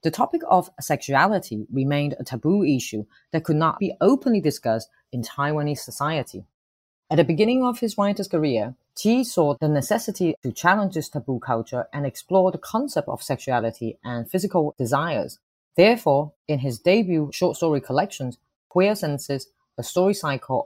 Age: 30-49